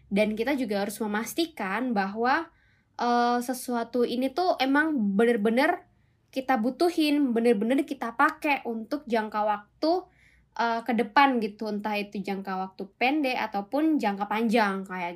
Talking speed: 130 wpm